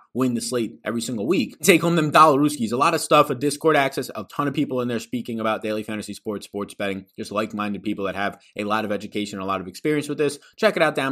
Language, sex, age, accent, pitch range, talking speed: English, male, 20-39, American, 110-180 Hz, 265 wpm